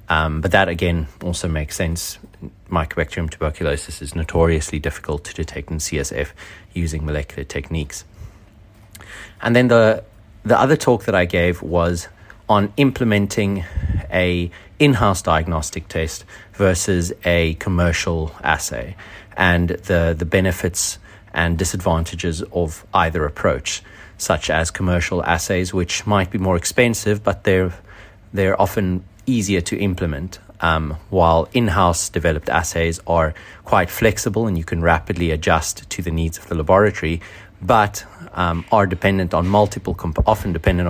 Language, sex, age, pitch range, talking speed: English, male, 30-49, 80-100 Hz, 135 wpm